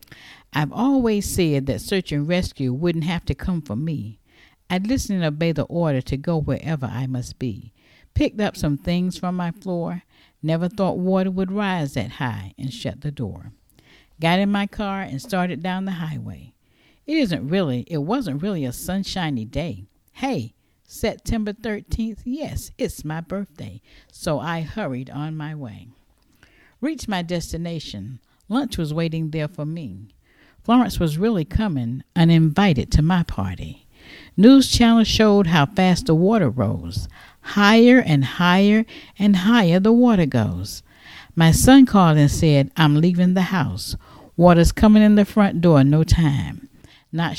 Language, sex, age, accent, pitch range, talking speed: English, female, 50-69, American, 135-195 Hz, 160 wpm